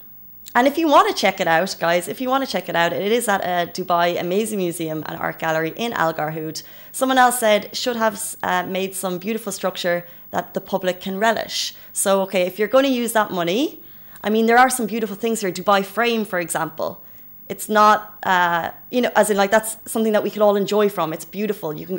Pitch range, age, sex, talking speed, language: 185-225 Hz, 20-39, female, 230 wpm, Arabic